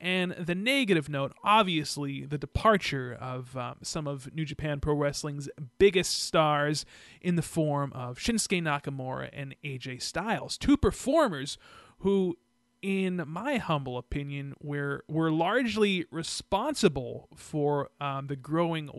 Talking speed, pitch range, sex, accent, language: 130 wpm, 145-190 Hz, male, American, English